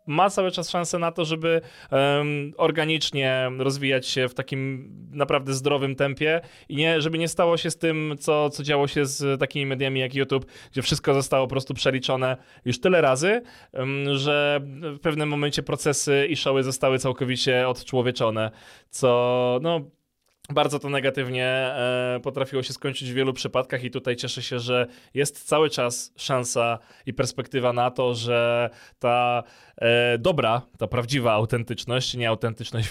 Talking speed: 150 wpm